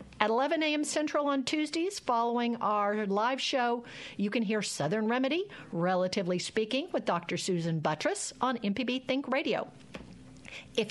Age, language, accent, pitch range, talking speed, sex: 50-69, English, American, 205-295 Hz, 145 wpm, female